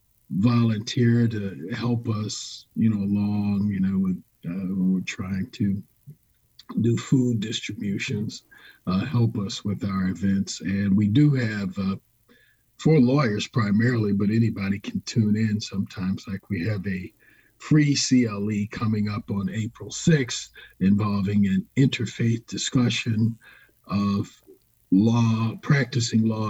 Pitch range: 100-115 Hz